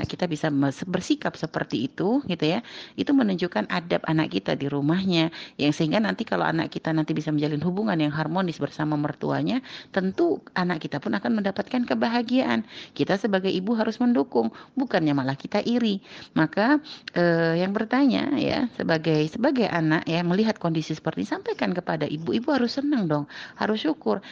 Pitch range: 170-250 Hz